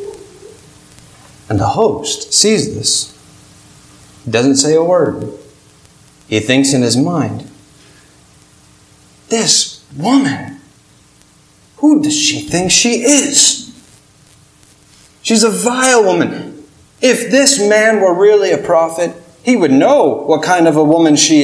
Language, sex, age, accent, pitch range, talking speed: English, male, 30-49, American, 155-230 Hz, 120 wpm